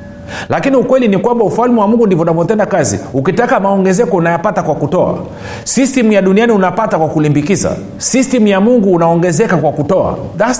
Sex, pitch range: male, 145-210 Hz